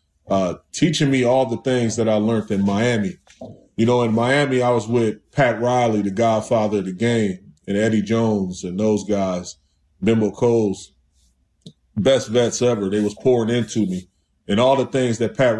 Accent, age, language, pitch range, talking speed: American, 20-39, English, 105-130 Hz, 180 wpm